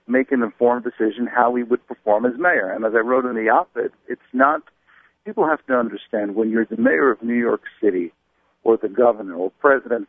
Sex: male